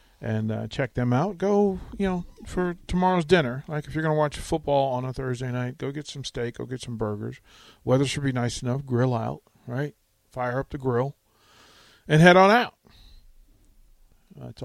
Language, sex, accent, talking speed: English, male, American, 195 wpm